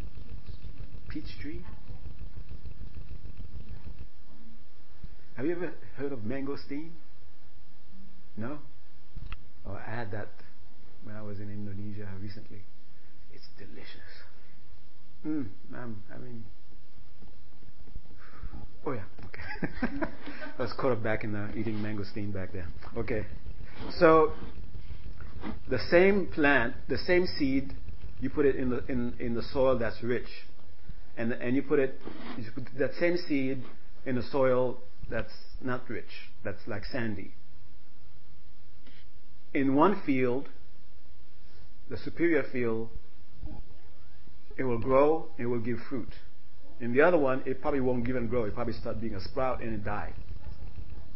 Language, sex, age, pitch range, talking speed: English, male, 50-69, 80-125 Hz, 125 wpm